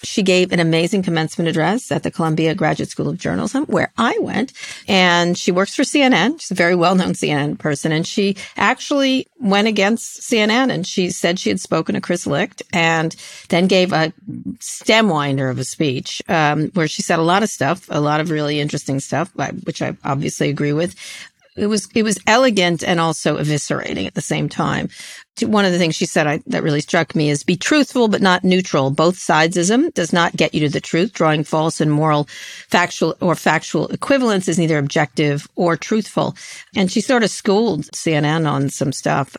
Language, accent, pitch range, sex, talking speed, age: English, American, 155-200 Hz, female, 200 wpm, 40-59